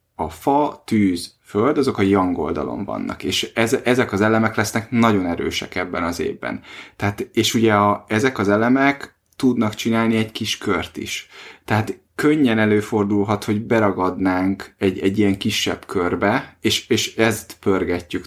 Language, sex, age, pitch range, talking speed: Hungarian, male, 30-49, 100-115 Hz, 150 wpm